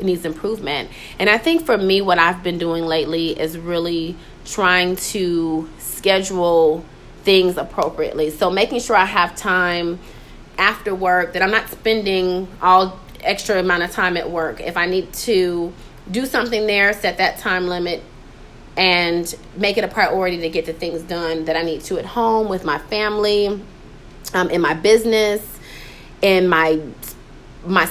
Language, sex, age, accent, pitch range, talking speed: English, female, 30-49, American, 165-200 Hz, 165 wpm